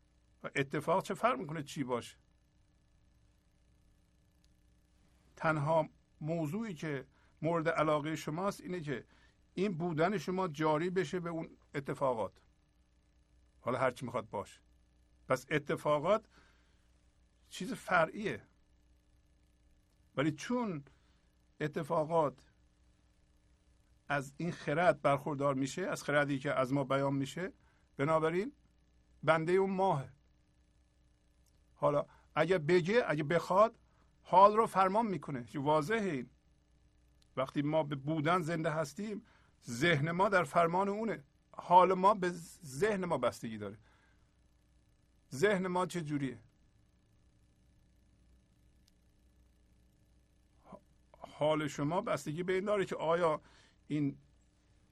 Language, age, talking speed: Persian, 50-69, 100 wpm